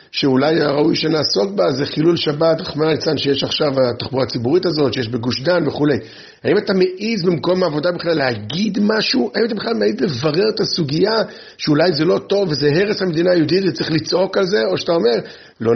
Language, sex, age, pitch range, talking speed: Hebrew, male, 50-69, 140-190 Hz, 185 wpm